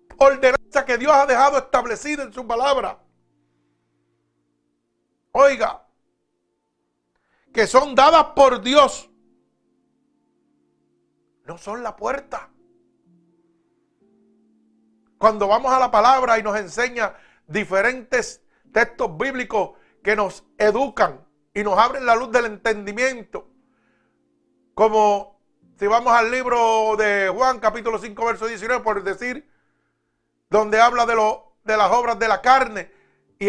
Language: Spanish